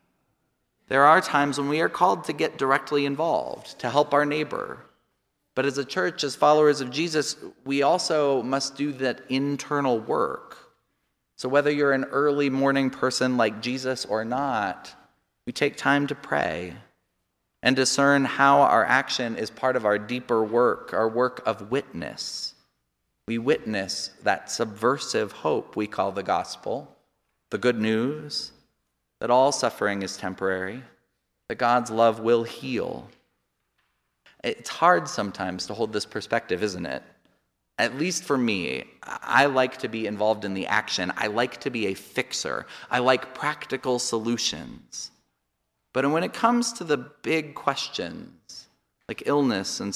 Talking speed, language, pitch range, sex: 150 wpm, English, 105-140 Hz, male